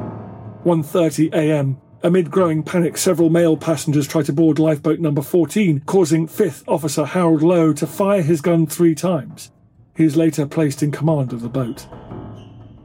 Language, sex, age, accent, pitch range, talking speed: English, male, 40-59, British, 145-175 Hz, 155 wpm